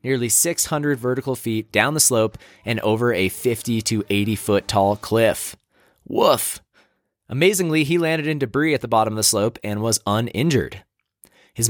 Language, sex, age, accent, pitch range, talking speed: English, male, 20-39, American, 105-140 Hz, 165 wpm